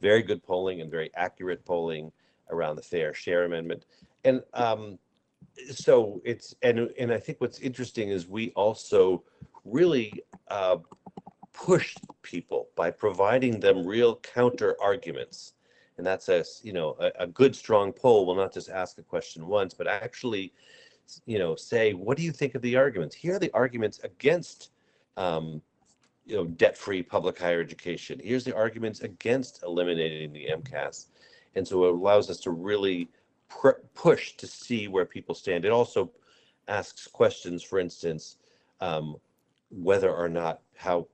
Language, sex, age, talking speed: English, male, 40-59, 155 wpm